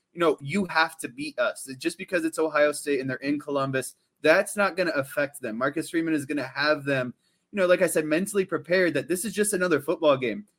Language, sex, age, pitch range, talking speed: English, male, 20-39, 140-165 Hz, 245 wpm